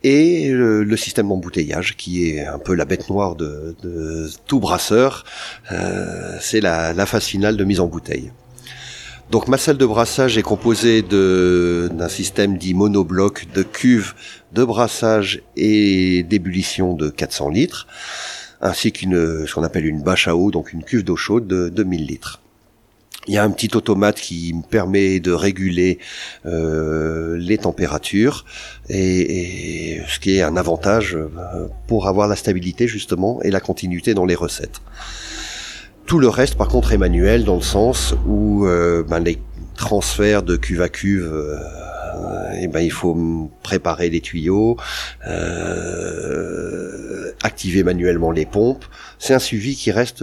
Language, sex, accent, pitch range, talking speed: French, male, French, 85-105 Hz, 160 wpm